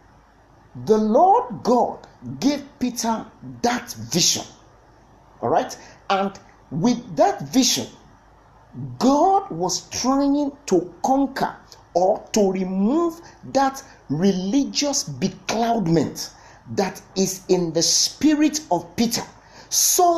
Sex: male